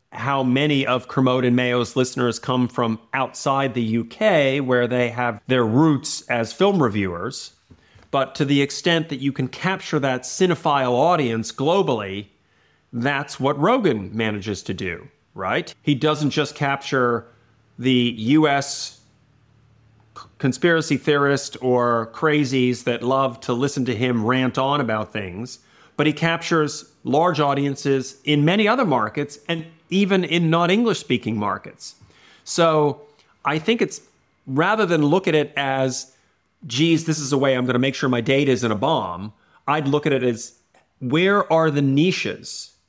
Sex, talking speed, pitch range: male, 150 wpm, 120-150 Hz